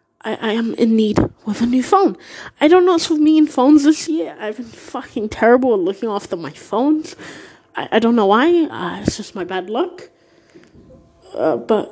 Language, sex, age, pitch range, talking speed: English, female, 20-39, 205-270 Hz, 205 wpm